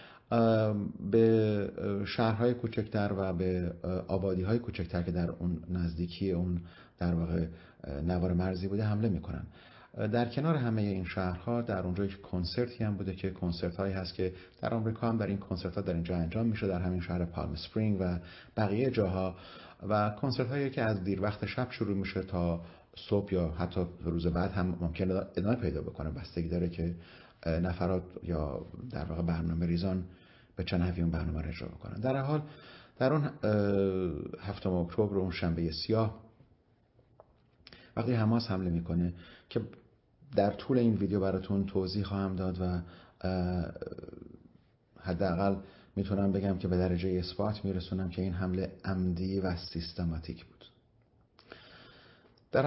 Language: English